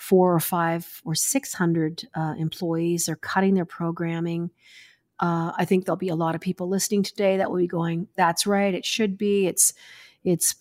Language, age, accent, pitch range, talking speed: English, 40-59, American, 170-205 Hz, 185 wpm